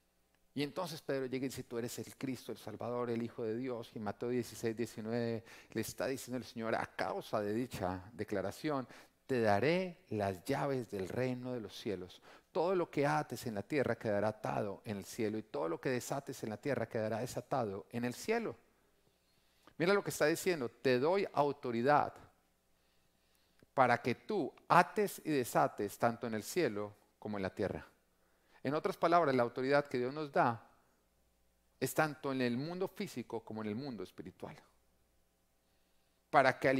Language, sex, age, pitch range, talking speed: Spanish, male, 40-59, 100-135 Hz, 180 wpm